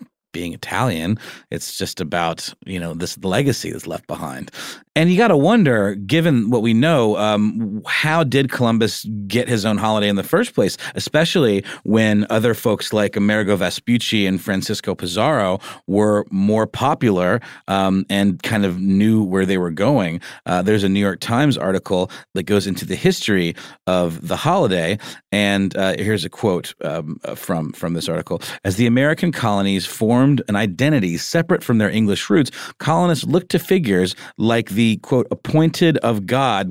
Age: 30-49